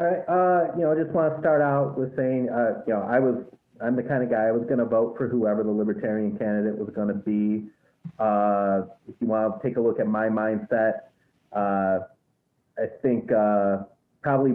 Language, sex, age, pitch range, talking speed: English, male, 30-49, 105-155 Hz, 215 wpm